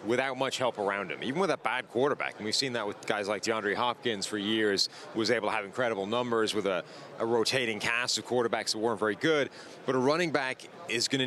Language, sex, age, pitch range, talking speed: English, male, 30-49, 115-135 Hz, 235 wpm